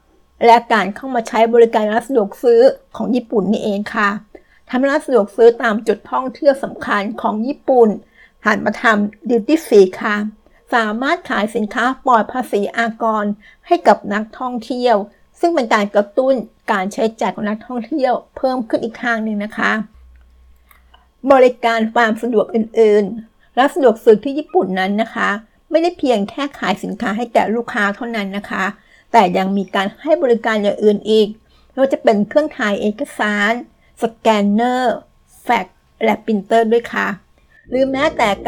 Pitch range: 210-250 Hz